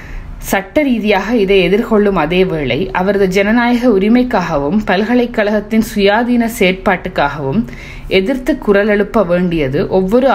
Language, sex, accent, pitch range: Tamil, female, native, 180-220 Hz